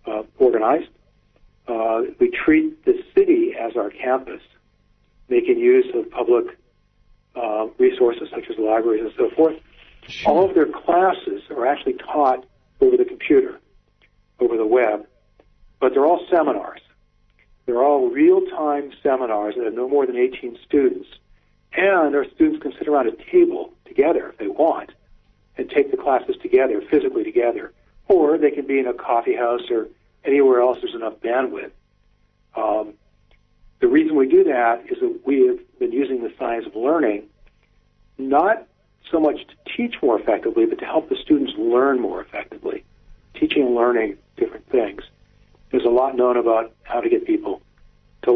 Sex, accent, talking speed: male, American, 160 wpm